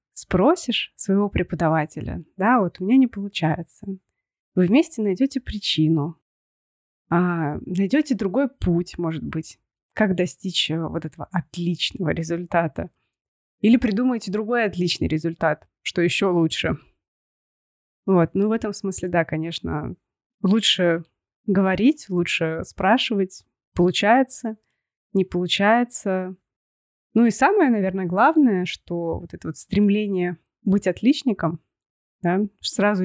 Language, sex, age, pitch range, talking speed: Russian, female, 20-39, 170-210 Hz, 110 wpm